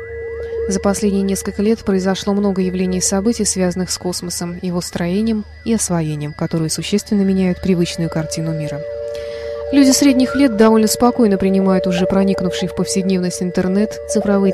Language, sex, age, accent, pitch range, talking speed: Russian, female, 20-39, native, 175-230 Hz, 140 wpm